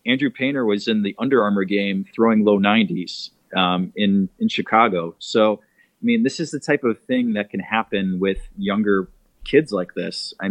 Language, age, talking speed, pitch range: English, 30-49, 190 wpm, 100-130 Hz